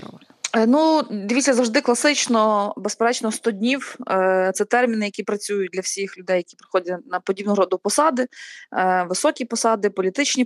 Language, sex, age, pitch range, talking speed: Ukrainian, female, 20-39, 185-235 Hz, 140 wpm